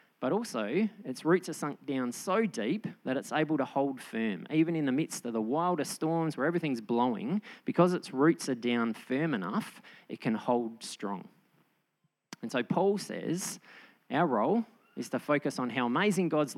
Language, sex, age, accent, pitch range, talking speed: English, male, 20-39, Australian, 120-175 Hz, 180 wpm